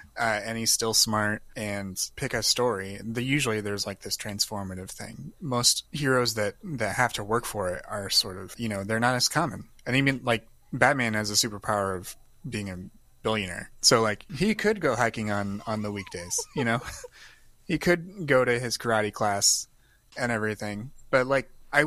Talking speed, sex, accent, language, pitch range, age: 185 wpm, male, American, English, 105-125 Hz, 30-49